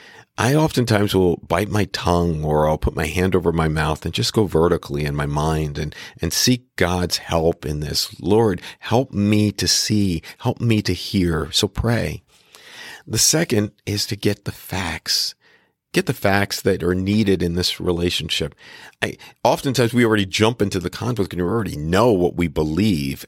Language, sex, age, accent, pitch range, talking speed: English, male, 40-59, American, 90-115 Hz, 180 wpm